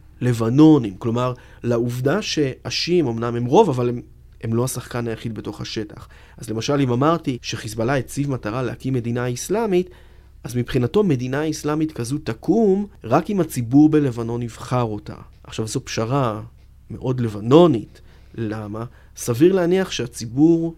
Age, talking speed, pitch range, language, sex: 30-49, 135 wpm, 115-155 Hz, Hebrew, male